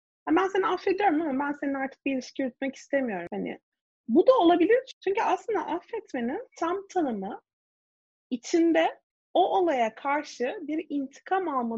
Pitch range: 265-380 Hz